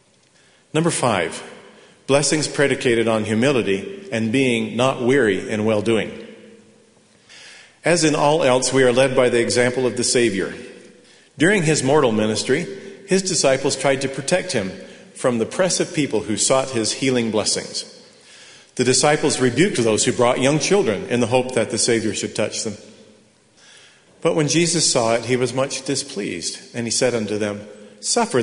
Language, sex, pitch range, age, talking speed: English, male, 110-140 Hz, 40-59, 165 wpm